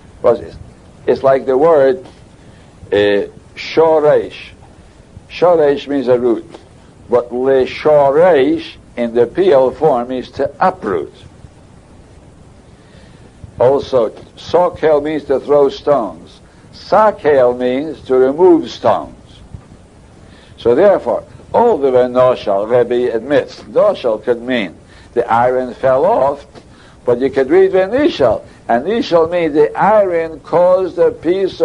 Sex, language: male, English